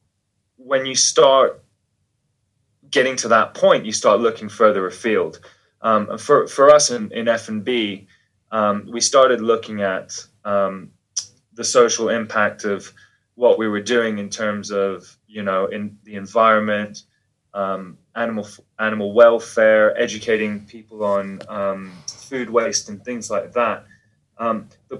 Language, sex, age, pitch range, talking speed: English, male, 20-39, 105-125 Hz, 135 wpm